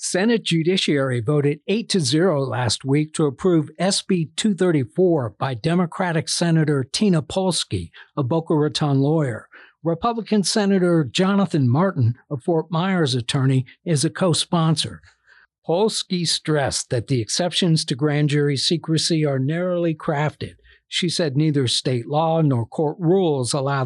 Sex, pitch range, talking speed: male, 135-175 Hz, 130 wpm